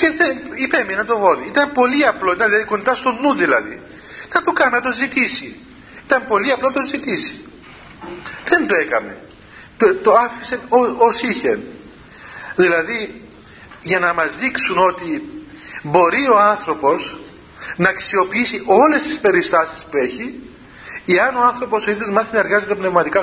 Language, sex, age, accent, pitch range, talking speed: Greek, male, 50-69, native, 190-250 Hz, 150 wpm